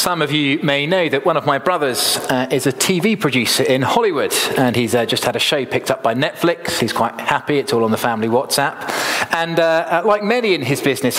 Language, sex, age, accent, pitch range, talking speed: English, male, 30-49, British, 115-165 Hz, 250 wpm